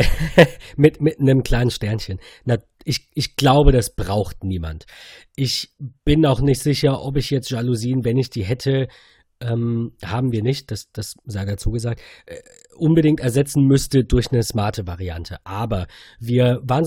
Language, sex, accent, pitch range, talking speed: German, male, German, 105-140 Hz, 155 wpm